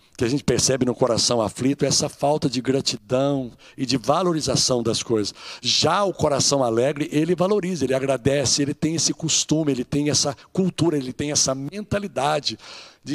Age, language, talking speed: 60-79, Portuguese, 175 wpm